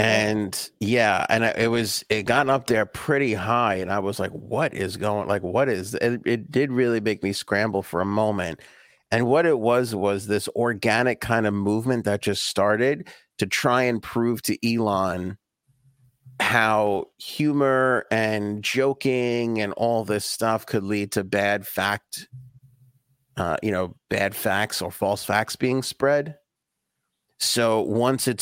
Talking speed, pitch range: 160 wpm, 100-125 Hz